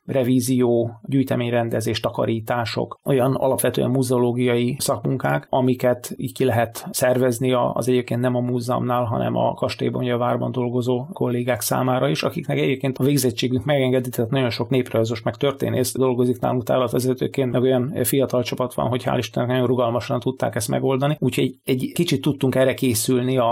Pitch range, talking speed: 120-130 Hz, 150 wpm